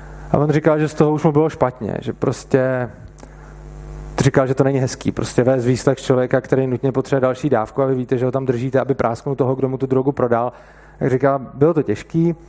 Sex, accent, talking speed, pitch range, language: male, native, 225 wpm, 125-150 Hz, Czech